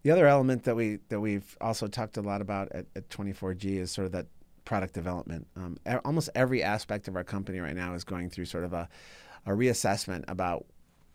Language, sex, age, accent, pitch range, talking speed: English, male, 30-49, American, 95-110 Hz, 215 wpm